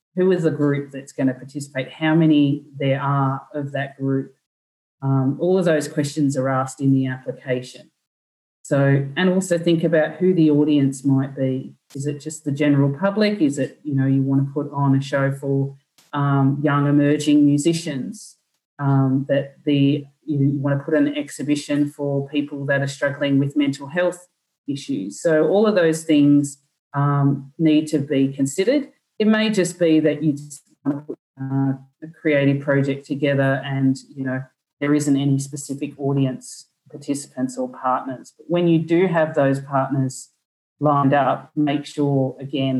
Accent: Australian